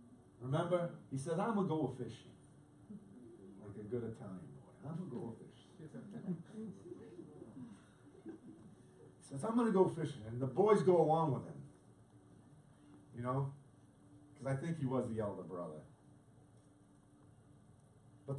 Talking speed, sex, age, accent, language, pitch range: 140 wpm, male, 50-69, American, English, 120-160 Hz